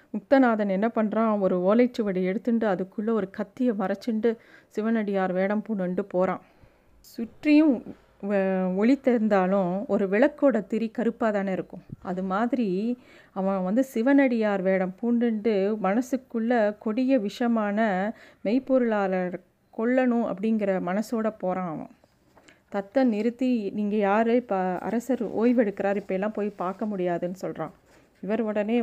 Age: 30-49